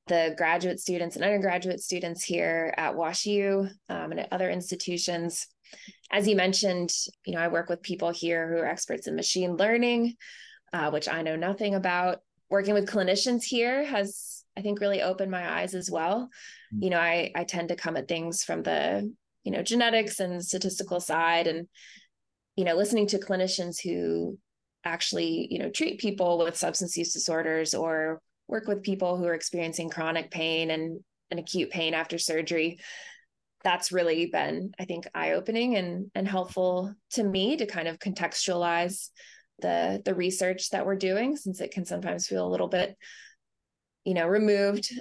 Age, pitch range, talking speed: 20-39, 170-200 Hz, 170 wpm